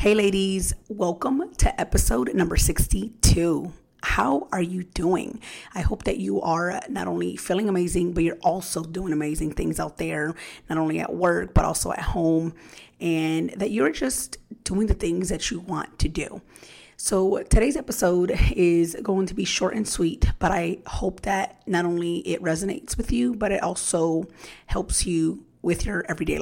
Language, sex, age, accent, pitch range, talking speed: English, female, 30-49, American, 155-190 Hz, 175 wpm